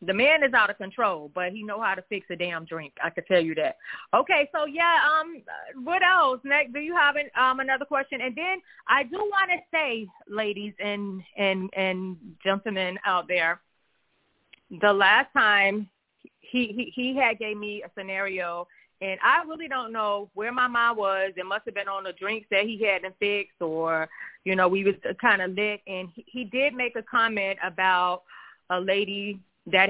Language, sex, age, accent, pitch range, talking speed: English, female, 30-49, American, 190-245 Hz, 200 wpm